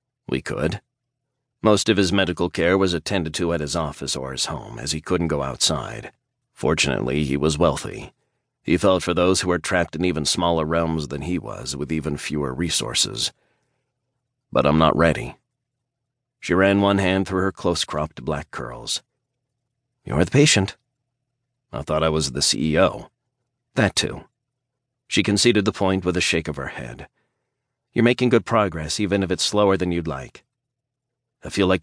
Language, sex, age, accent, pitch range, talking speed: English, male, 40-59, American, 80-110 Hz, 175 wpm